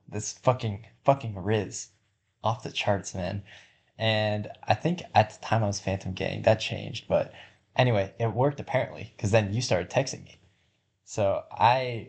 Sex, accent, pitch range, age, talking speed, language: male, American, 100-115 Hz, 20-39, 165 wpm, English